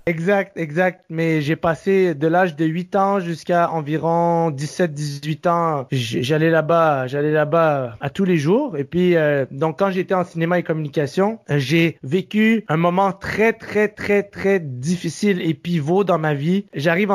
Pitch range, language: 155-190 Hz, French